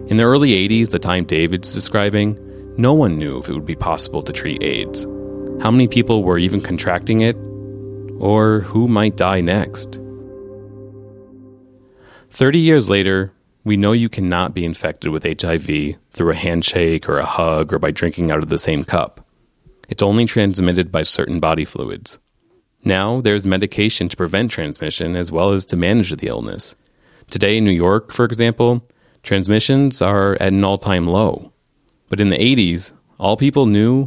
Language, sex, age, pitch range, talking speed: English, male, 30-49, 90-115 Hz, 170 wpm